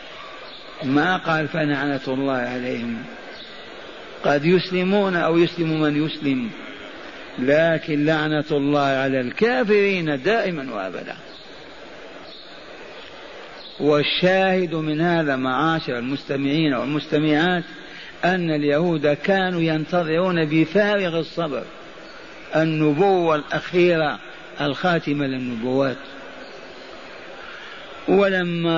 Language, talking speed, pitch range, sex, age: Arabic, 75 wpm, 145-175 Hz, male, 50-69